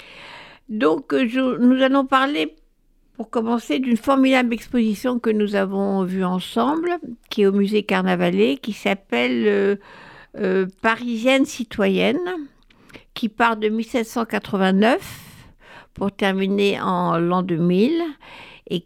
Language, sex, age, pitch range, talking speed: French, female, 60-79, 190-255 Hz, 115 wpm